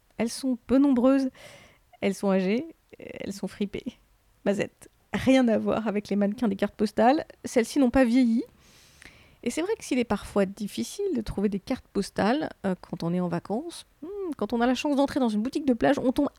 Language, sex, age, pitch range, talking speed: French, female, 30-49, 200-255 Hz, 205 wpm